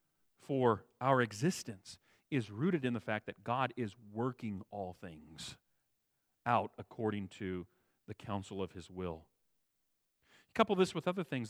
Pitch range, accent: 115-150 Hz, American